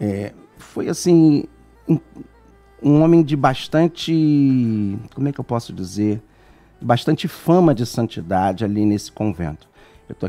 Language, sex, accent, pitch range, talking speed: Portuguese, male, Brazilian, 105-135 Hz, 130 wpm